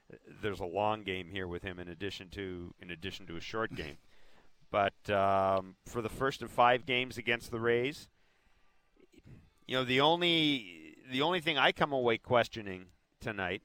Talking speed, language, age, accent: 170 wpm, English, 40-59, American